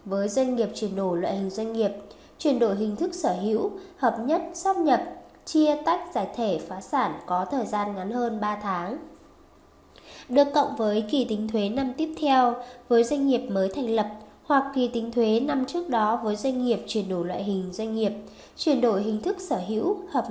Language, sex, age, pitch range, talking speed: Vietnamese, female, 10-29, 210-280 Hz, 205 wpm